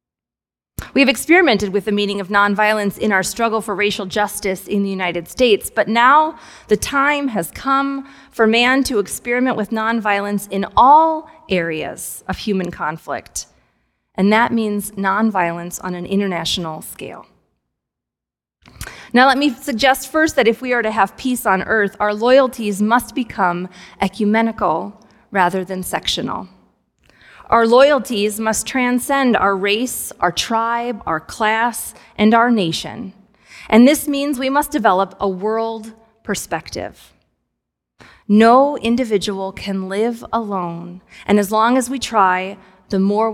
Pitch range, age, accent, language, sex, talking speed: 195-245 Hz, 30-49, American, English, female, 140 wpm